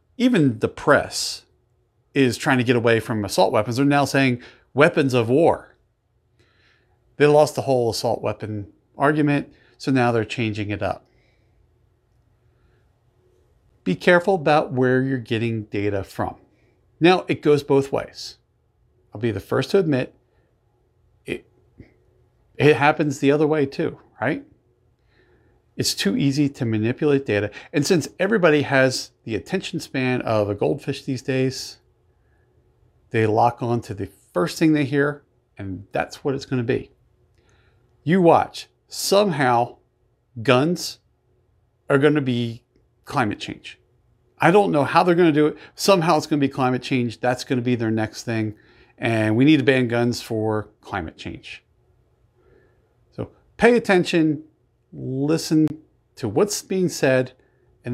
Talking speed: 145 wpm